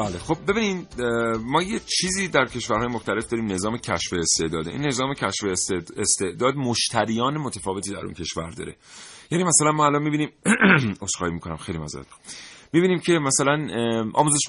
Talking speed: 145 wpm